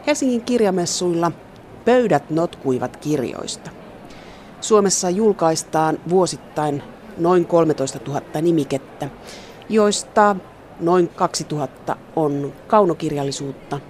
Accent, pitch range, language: native, 135-180 Hz, Finnish